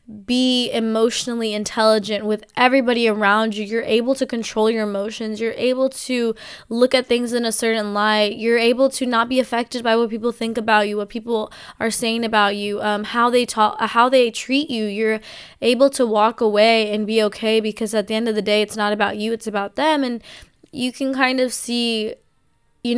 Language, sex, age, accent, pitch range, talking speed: English, female, 20-39, American, 215-250 Hz, 205 wpm